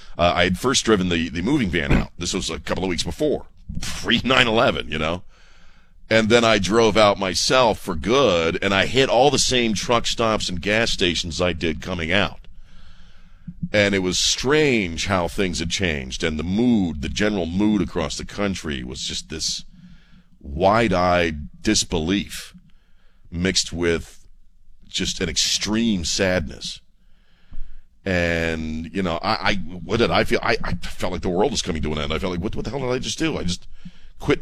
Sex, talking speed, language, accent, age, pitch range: male, 185 wpm, English, American, 40-59, 85-105 Hz